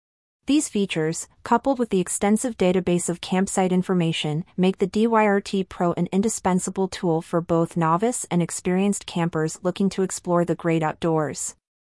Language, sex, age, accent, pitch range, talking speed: English, female, 30-49, American, 170-210 Hz, 145 wpm